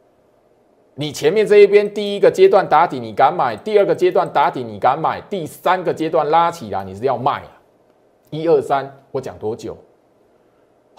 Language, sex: Chinese, male